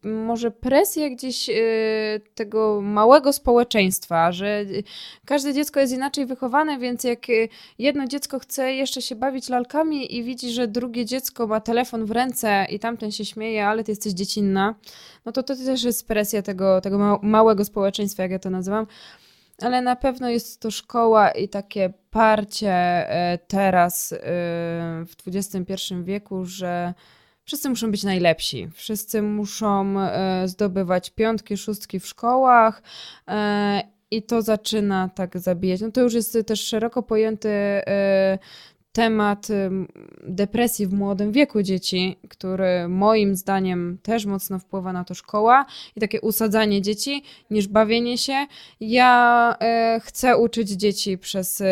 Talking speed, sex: 135 wpm, female